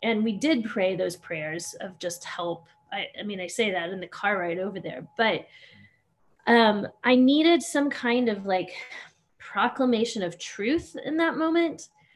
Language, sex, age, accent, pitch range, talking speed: English, female, 20-39, American, 200-250 Hz, 175 wpm